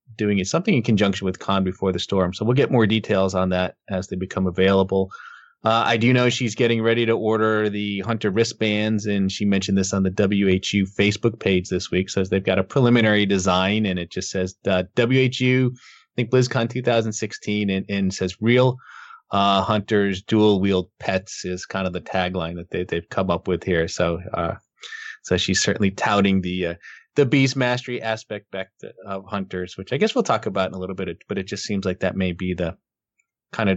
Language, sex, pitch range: English, male, 95-110 Hz